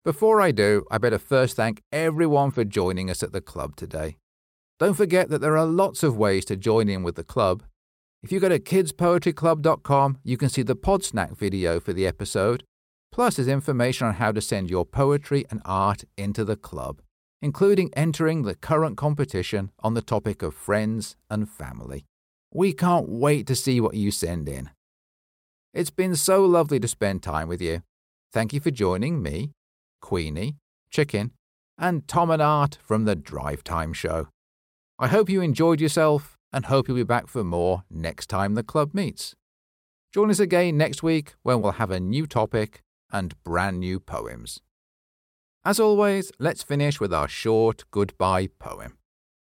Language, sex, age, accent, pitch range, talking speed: English, male, 50-69, British, 90-155 Hz, 175 wpm